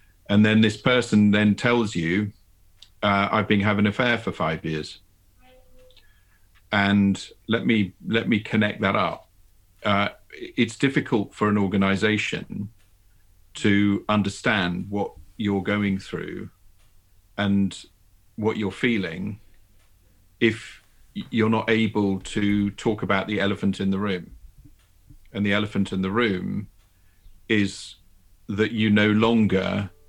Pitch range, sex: 90-105 Hz, male